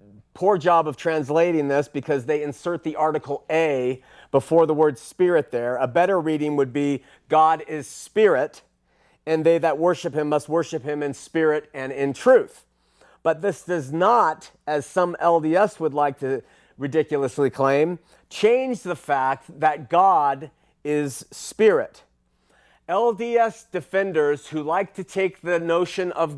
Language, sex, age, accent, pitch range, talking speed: English, male, 40-59, American, 145-190 Hz, 150 wpm